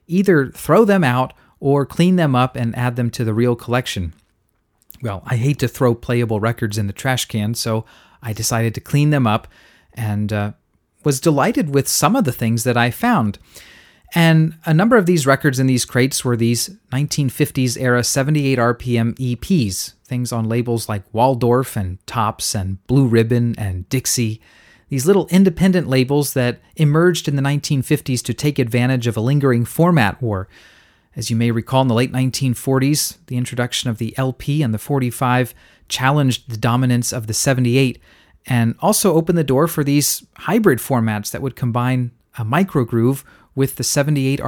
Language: English